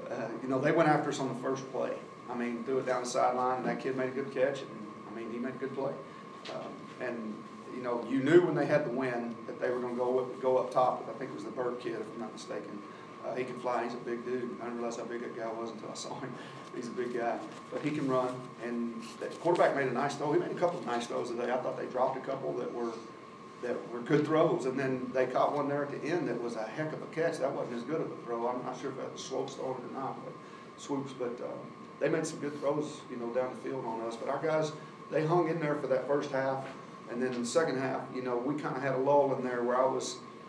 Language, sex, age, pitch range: English, male, 40-59, 120-140 Hz